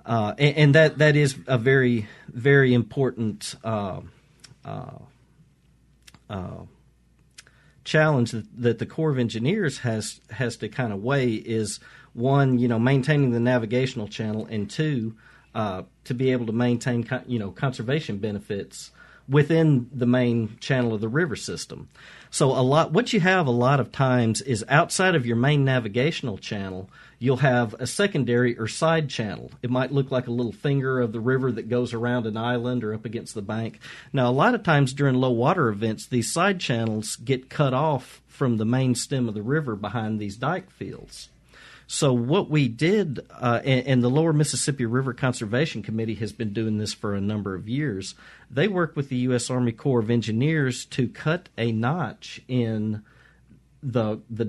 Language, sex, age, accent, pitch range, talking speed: English, male, 40-59, American, 115-140 Hz, 175 wpm